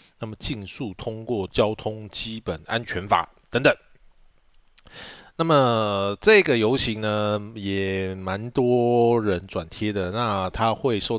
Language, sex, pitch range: Chinese, male, 95-120 Hz